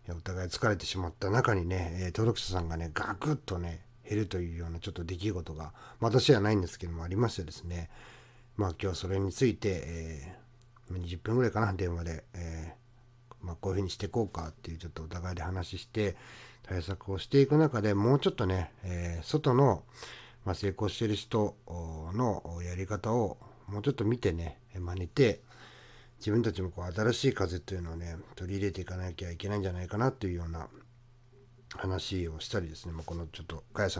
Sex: male